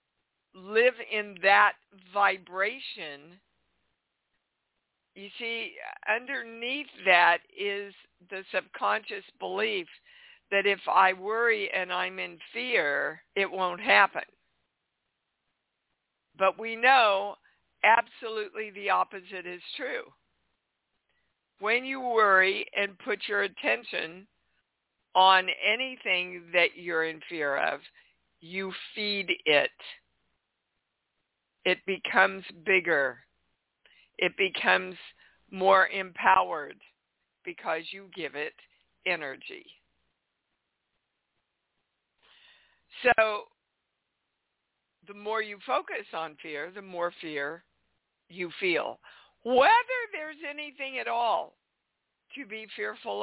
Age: 60-79